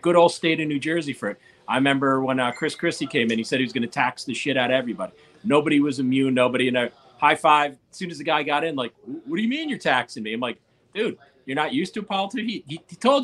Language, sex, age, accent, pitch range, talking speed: English, male, 40-59, American, 130-170 Hz, 280 wpm